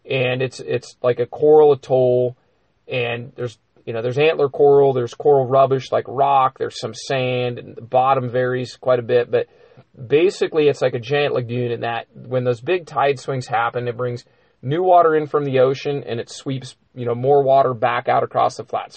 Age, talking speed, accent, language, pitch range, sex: 30-49, 205 wpm, American, English, 120-140 Hz, male